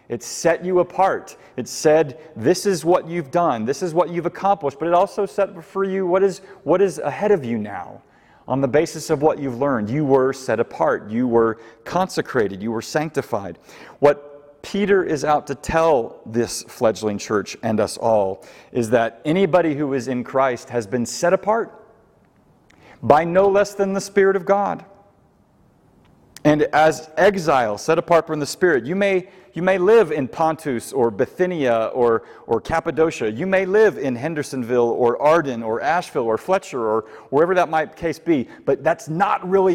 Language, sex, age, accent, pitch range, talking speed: English, male, 40-59, American, 130-180 Hz, 180 wpm